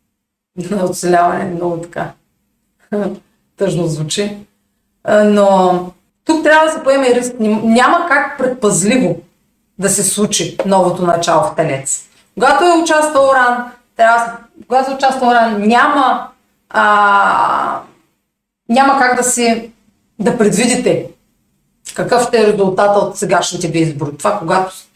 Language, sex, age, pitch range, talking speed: Bulgarian, female, 30-49, 180-245 Hz, 115 wpm